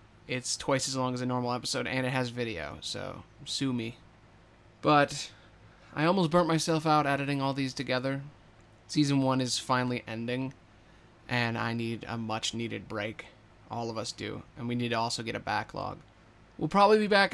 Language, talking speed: English, 180 wpm